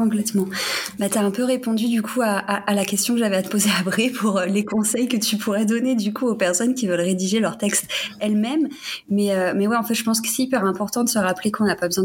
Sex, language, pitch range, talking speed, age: female, French, 185-225 Hz, 290 wpm, 20-39